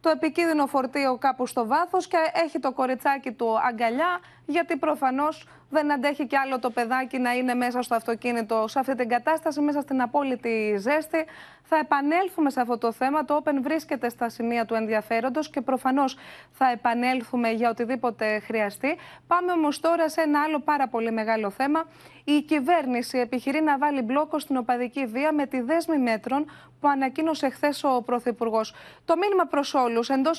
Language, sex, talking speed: Greek, female, 170 wpm